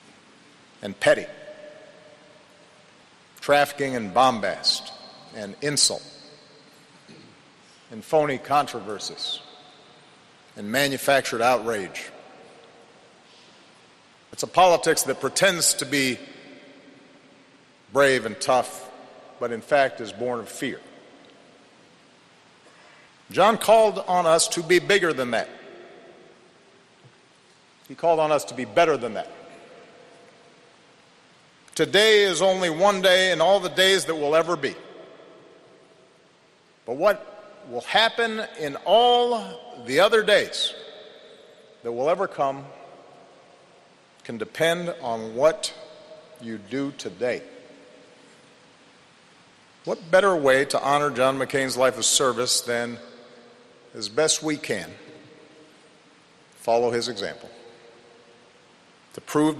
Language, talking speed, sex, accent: English, 100 wpm, male, American